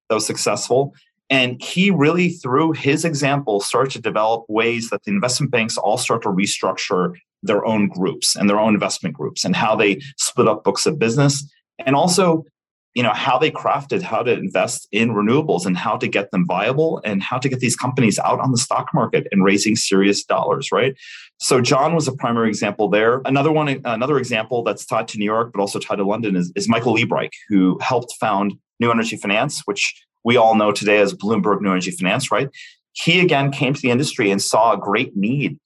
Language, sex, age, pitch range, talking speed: English, male, 30-49, 100-140 Hz, 210 wpm